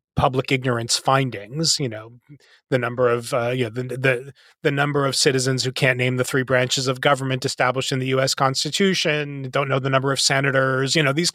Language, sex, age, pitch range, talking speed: English, male, 30-49, 140-175 Hz, 200 wpm